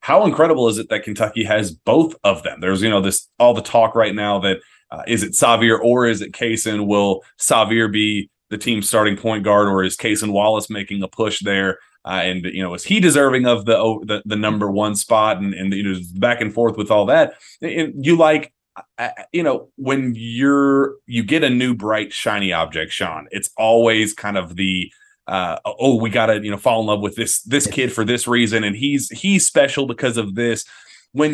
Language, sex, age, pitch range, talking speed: English, male, 30-49, 100-120 Hz, 215 wpm